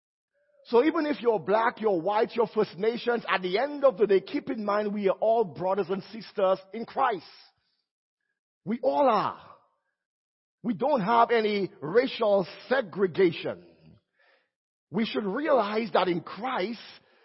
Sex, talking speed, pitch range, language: male, 145 wpm, 190-265 Hz, English